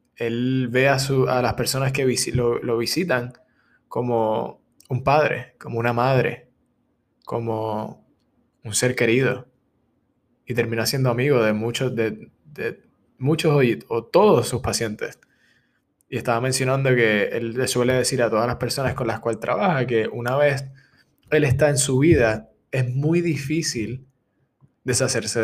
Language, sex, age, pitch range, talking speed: Spanish, male, 20-39, 115-135 Hz, 145 wpm